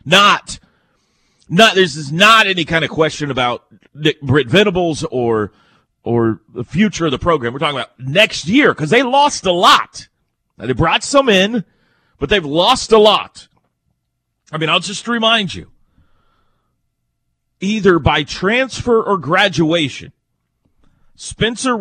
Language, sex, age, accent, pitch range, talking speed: English, male, 40-59, American, 140-190 Hz, 140 wpm